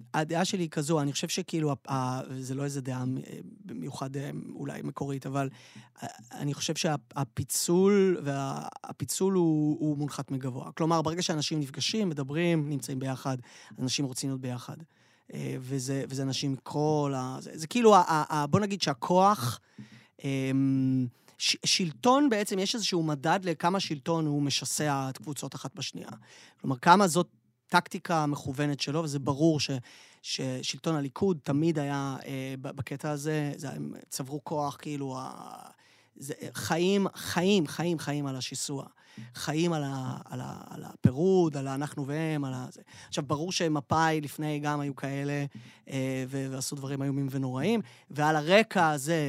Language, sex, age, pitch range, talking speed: Hebrew, male, 30-49, 135-165 Hz, 135 wpm